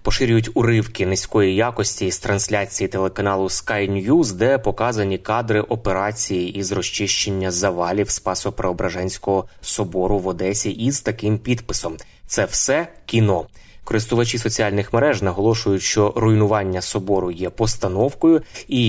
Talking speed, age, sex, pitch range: 115 wpm, 20-39, male, 95-115 Hz